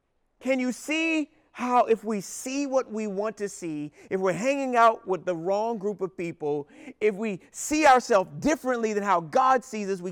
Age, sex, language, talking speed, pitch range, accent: 40-59, male, English, 195 wpm, 225-315 Hz, American